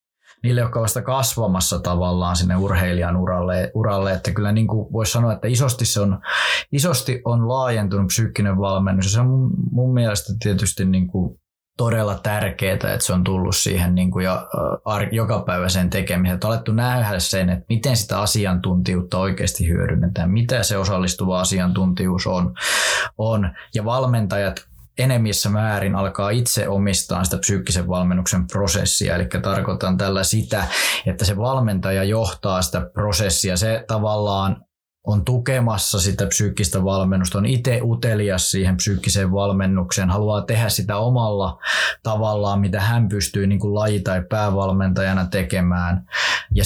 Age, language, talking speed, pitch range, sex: 20-39, Finnish, 140 wpm, 95-110 Hz, male